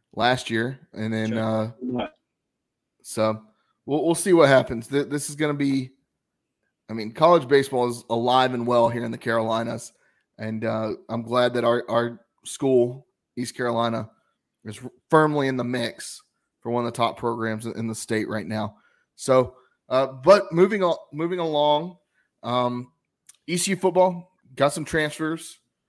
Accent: American